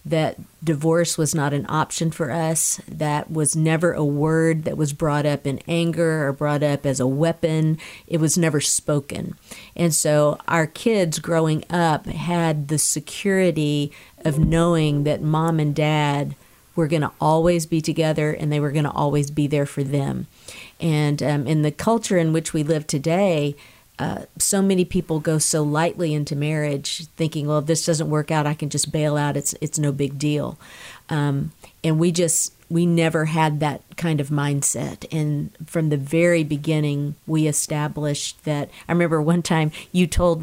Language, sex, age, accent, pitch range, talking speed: English, female, 50-69, American, 150-165 Hz, 180 wpm